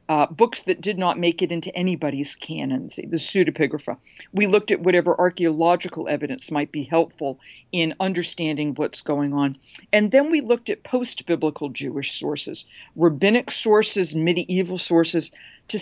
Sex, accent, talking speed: female, American, 150 wpm